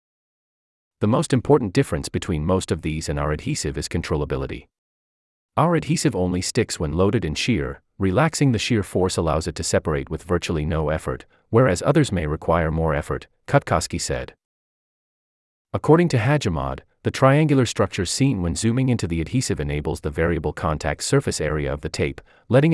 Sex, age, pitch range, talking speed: male, 30-49, 80-115 Hz, 165 wpm